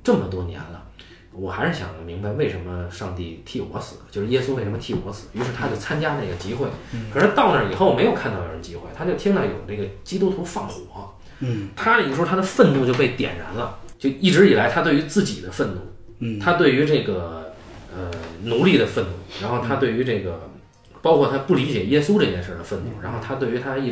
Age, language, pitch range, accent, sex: 20-39, Chinese, 100-140 Hz, native, male